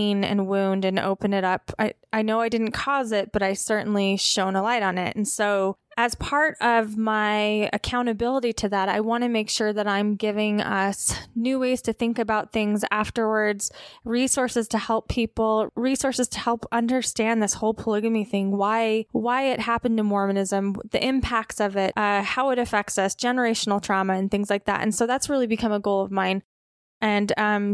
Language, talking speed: English, 195 wpm